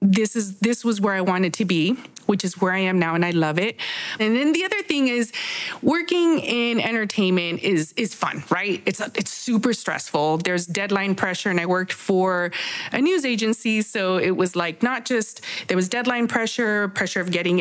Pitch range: 190-250 Hz